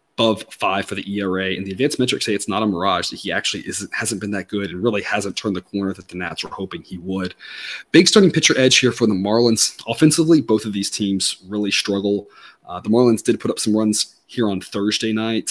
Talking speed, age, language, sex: 235 wpm, 30-49, English, male